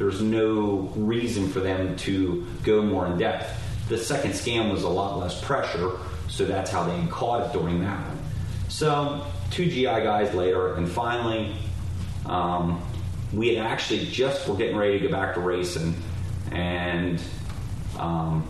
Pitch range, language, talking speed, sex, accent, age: 90-105 Hz, English, 155 wpm, male, American, 30-49